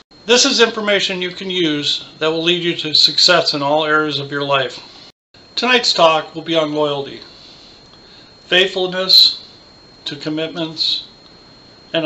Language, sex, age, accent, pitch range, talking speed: English, male, 50-69, American, 150-180 Hz, 140 wpm